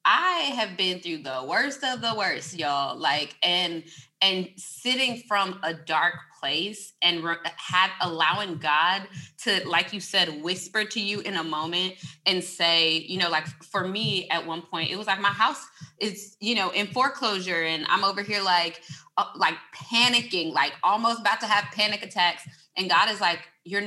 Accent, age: American, 20-39